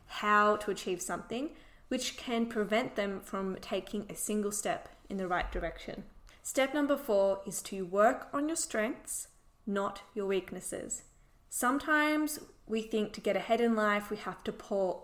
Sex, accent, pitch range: female, Australian, 195-235 Hz